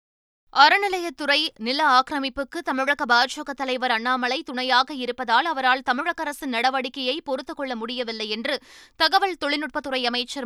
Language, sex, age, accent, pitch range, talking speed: Tamil, female, 20-39, native, 235-285 Hz, 115 wpm